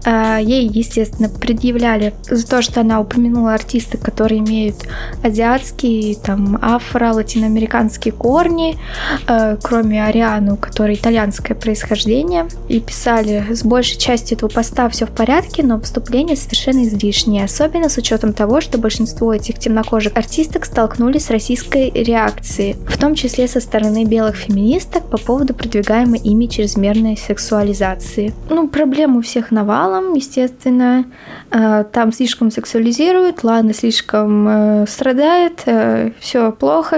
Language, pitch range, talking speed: Russian, 215-255 Hz, 120 wpm